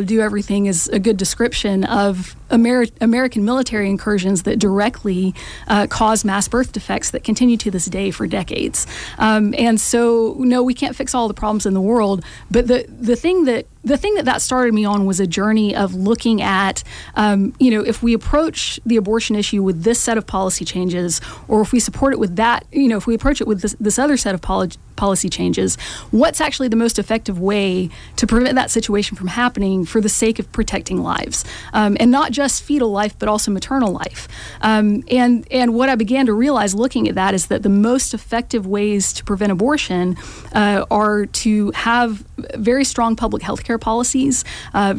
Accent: American